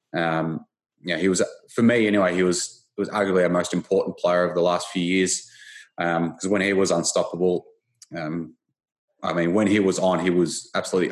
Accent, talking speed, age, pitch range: Australian, 195 wpm, 20-39, 85-105 Hz